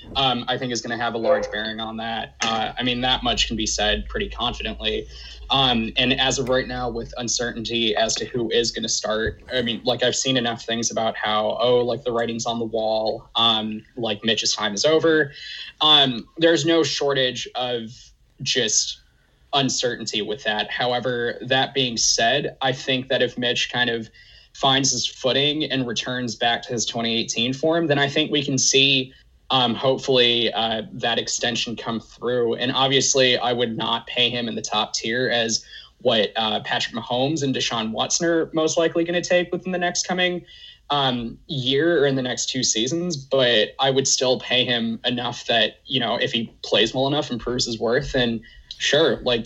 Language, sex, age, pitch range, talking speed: English, male, 20-39, 115-135 Hz, 195 wpm